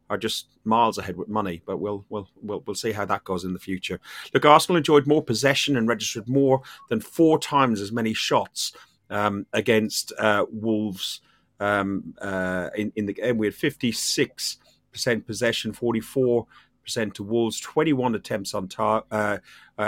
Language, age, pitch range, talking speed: English, 40-59, 105-130 Hz, 160 wpm